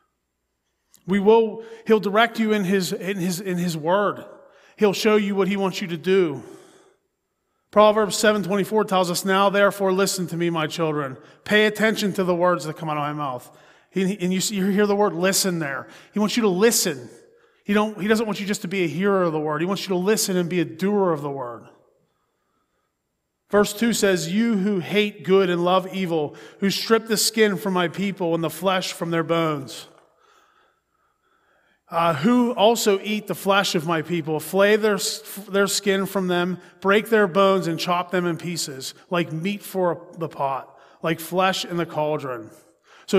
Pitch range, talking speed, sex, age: 175-210 Hz, 195 wpm, male, 30-49